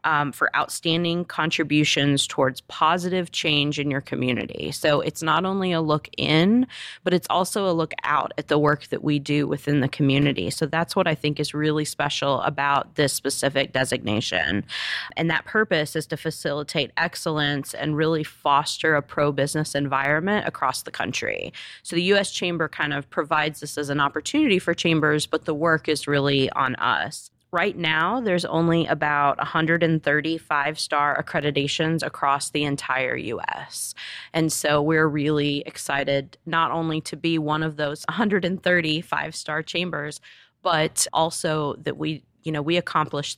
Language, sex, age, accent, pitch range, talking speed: English, female, 30-49, American, 145-165 Hz, 160 wpm